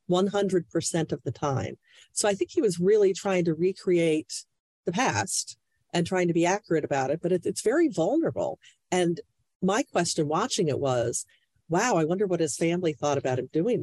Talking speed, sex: 180 wpm, female